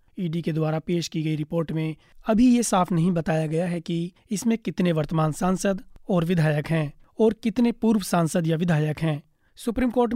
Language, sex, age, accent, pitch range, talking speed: Hindi, male, 30-49, native, 160-195 Hz, 190 wpm